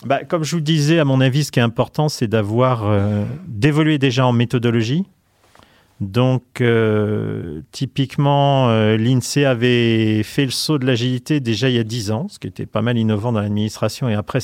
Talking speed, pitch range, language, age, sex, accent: 190 wpm, 115-145 Hz, French, 40-59, male, French